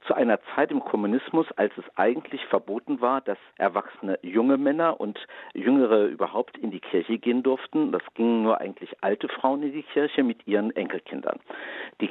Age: 50-69